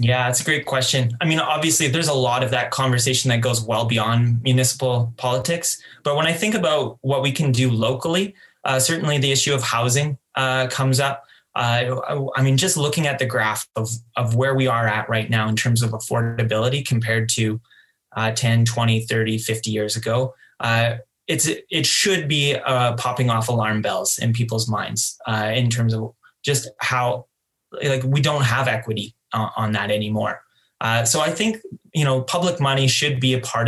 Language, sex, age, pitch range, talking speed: English, male, 20-39, 115-145 Hz, 190 wpm